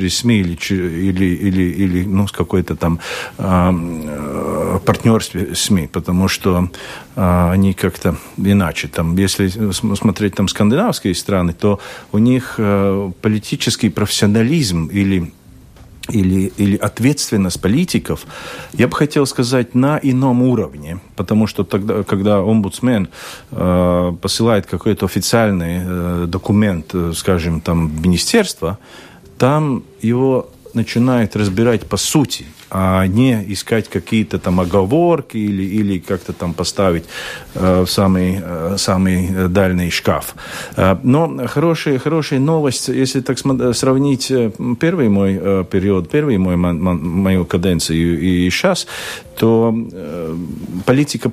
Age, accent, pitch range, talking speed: 40-59, native, 90-120 Hz, 115 wpm